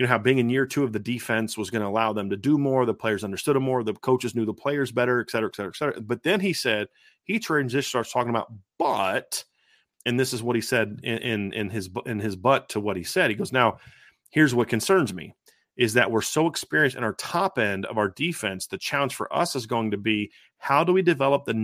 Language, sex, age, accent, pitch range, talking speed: English, male, 30-49, American, 110-135 Hz, 250 wpm